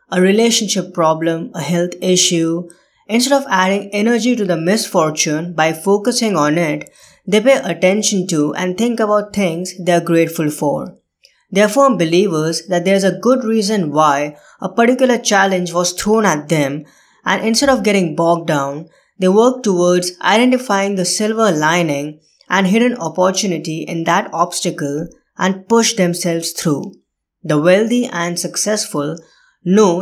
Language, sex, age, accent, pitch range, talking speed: English, female, 20-39, Indian, 160-200 Hz, 145 wpm